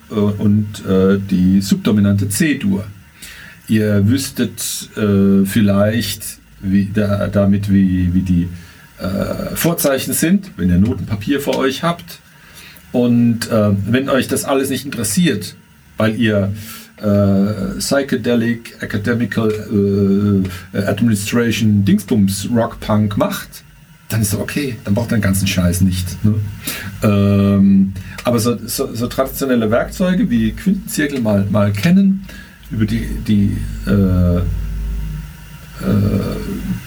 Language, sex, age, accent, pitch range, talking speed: German, male, 50-69, German, 100-120 Hz, 115 wpm